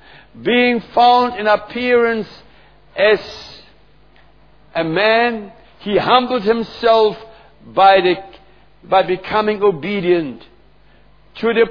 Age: 60-79